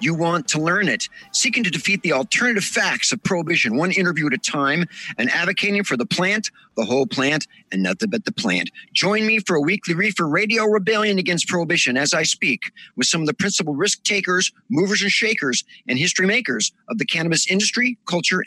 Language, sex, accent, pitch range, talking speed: English, male, American, 150-200 Hz, 200 wpm